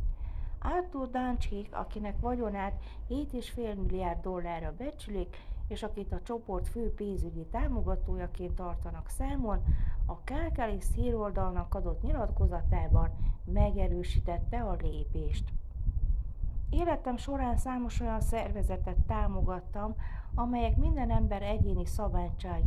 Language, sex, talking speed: Hungarian, female, 95 wpm